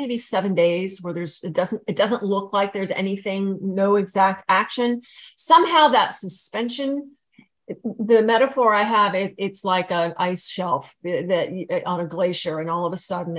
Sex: female